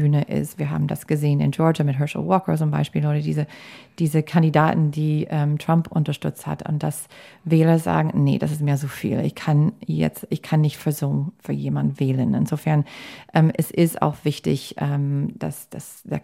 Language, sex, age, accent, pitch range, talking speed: German, female, 30-49, German, 140-165 Hz, 195 wpm